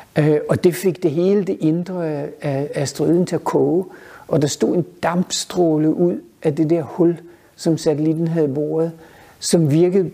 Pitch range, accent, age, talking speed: 155-180 Hz, native, 60-79, 165 wpm